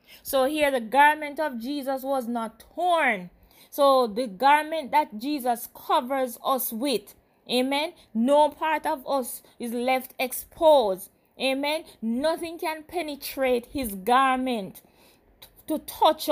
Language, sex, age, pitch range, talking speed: English, female, 20-39, 235-310 Hz, 120 wpm